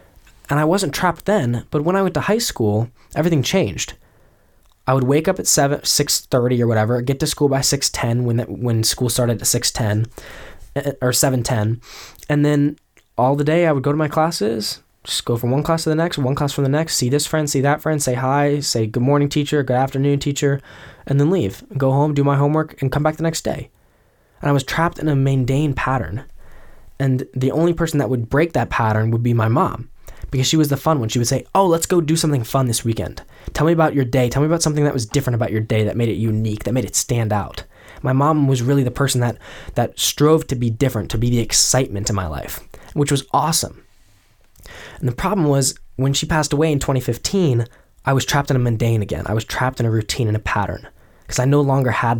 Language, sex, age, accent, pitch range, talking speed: English, male, 10-29, American, 115-145 Hz, 235 wpm